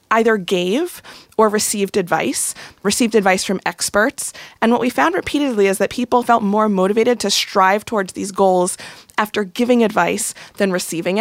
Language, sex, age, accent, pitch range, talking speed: English, female, 20-39, American, 185-225 Hz, 160 wpm